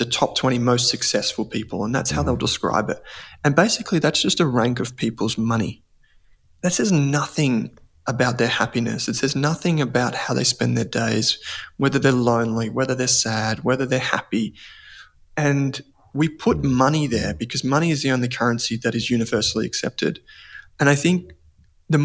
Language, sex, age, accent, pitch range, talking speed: English, male, 20-39, Australian, 120-140 Hz, 170 wpm